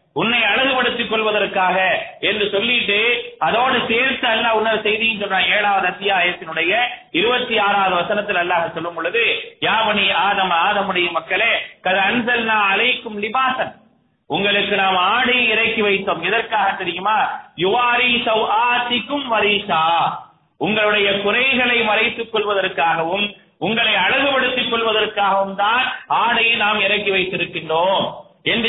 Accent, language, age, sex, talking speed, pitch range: Indian, English, 30-49, male, 60 wpm, 195-245 Hz